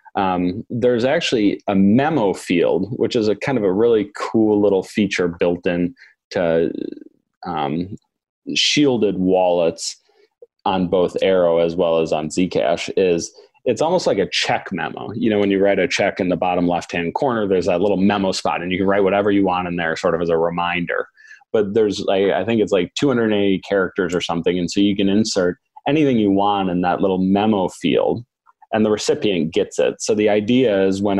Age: 30-49